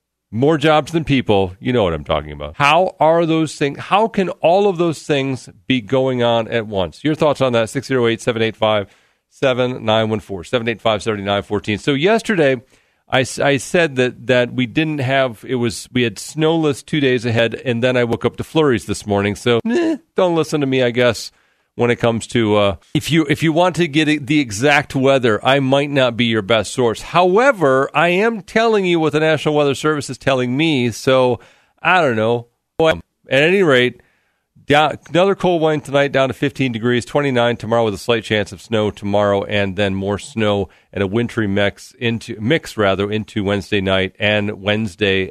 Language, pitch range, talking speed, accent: English, 105-145 Hz, 190 wpm, American